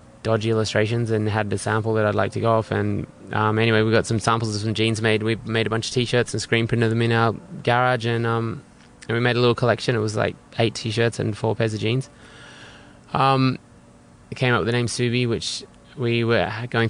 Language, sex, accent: English, male, Australian